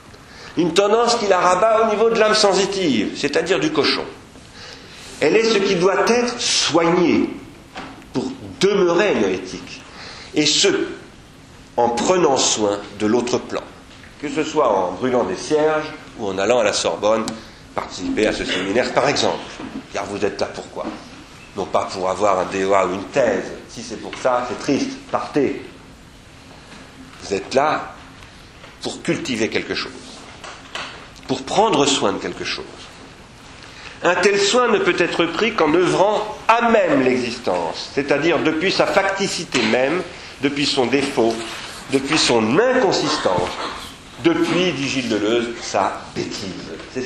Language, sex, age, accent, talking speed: French, male, 50-69, French, 145 wpm